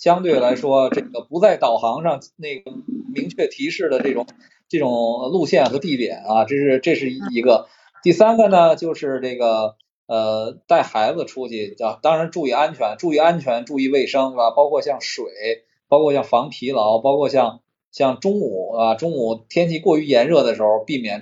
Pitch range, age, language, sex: 120-175 Hz, 20-39, Chinese, male